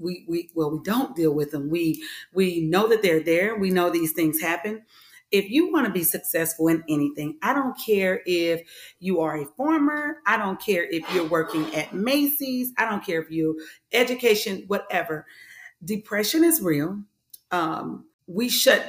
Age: 40-59